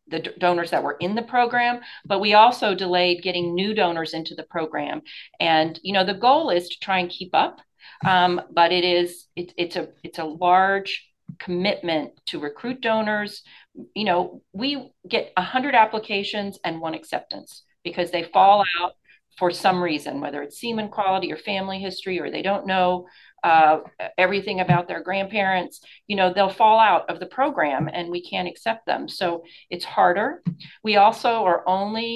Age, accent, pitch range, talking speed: 40-59, American, 175-210 Hz, 175 wpm